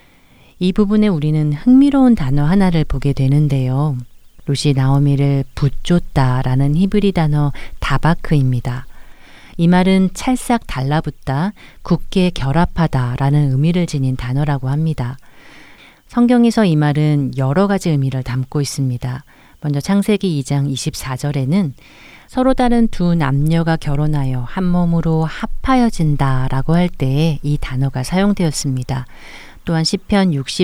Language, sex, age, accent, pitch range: Korean, female, 40-59, native, 140-185 Hz